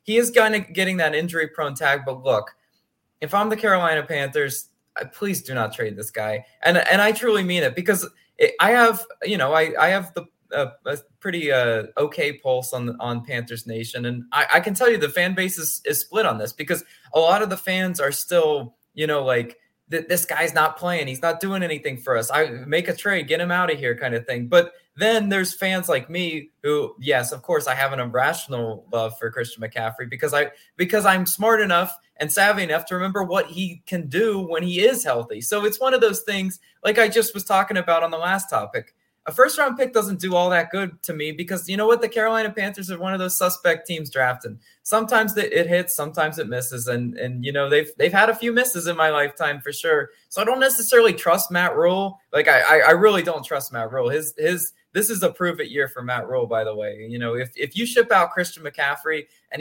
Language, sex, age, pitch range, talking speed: English, male, 20-39, 135-200 Hz, 230 wpm